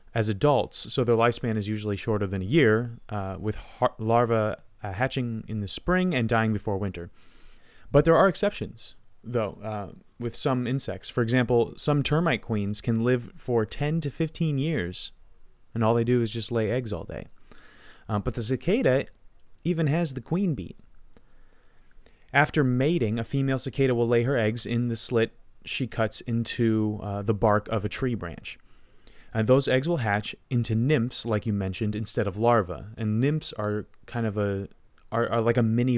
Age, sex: 30-49, male